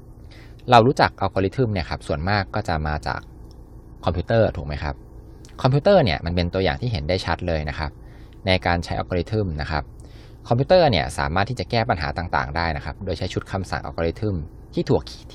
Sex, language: male, Thai